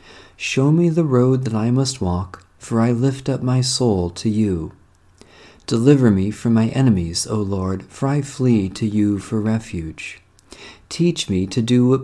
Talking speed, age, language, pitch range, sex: 175 wpm, 50-69, English, 95-130 Hz, male